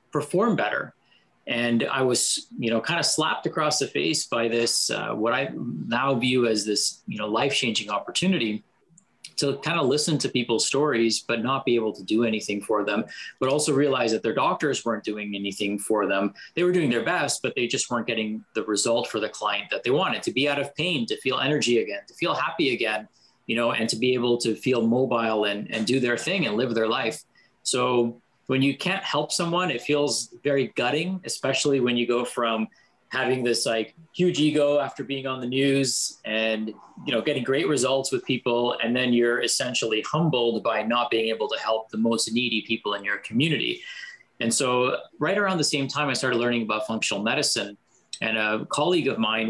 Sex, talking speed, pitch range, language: male, 205 wpm, 115-145 Hz, English